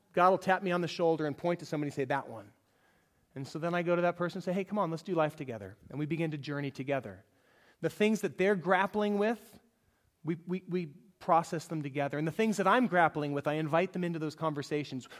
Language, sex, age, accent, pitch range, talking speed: English, male, 30-49, American, 145-205 Hz, 250 wpm